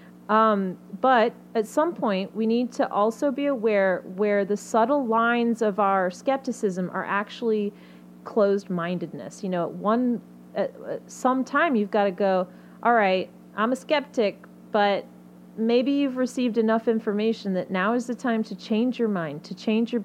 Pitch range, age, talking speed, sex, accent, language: 180-225 Hz, 30-49, 160 wpm, female, American, English